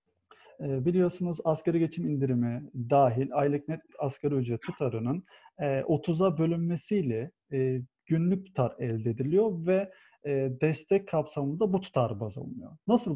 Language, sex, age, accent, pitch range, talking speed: Turkish, male, 40-59, native, 130-185 Hz, 110 wpm